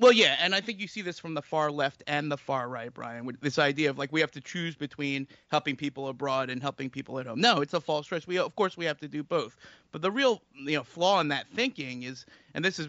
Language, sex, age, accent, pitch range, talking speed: English, male, 30-49, American, 145-185 Hz, 285 wpm